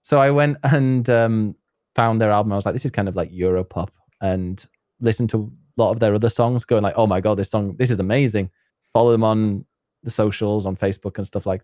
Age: 20-39